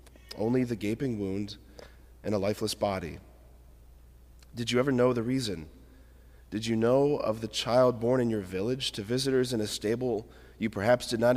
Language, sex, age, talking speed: English, male, 40-59, 175 wpm